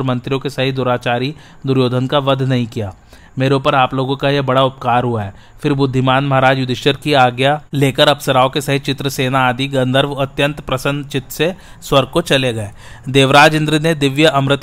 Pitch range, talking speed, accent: 130-145 Hz, 185 wpm, native